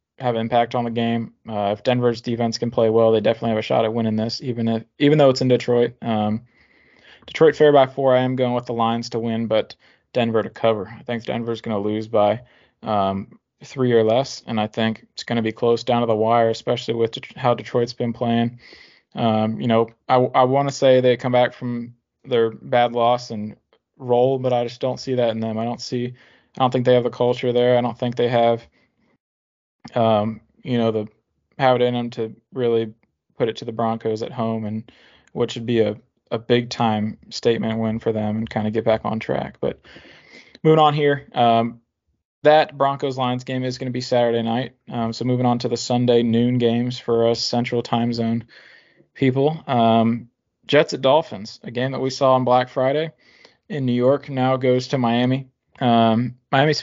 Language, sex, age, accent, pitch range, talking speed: English, male, 20-39, American, 115-125 Hz, 215 wpm